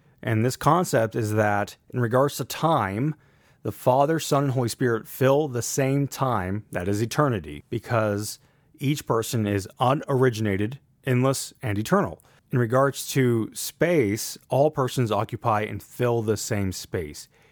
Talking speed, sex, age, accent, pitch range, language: 145 wpm, male, 30-49, American, 110-135 Hz, English